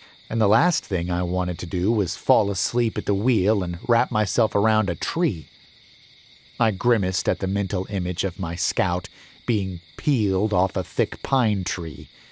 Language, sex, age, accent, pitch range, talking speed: English, male, 40-59, American, 95-125 Hz, 175 wpm